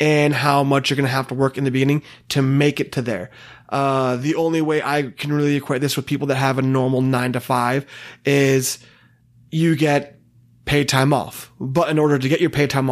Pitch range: 135-160 Hz